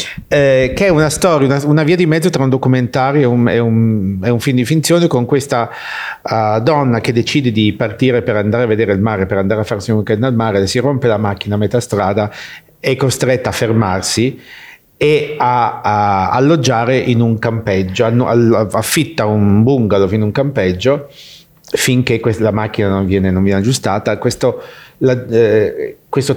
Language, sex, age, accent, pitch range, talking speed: English, male, 50-69, Italian, 110-135 Hz, 170 wpm